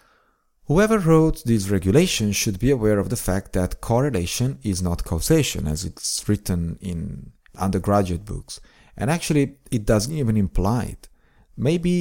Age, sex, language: 40-59, male, English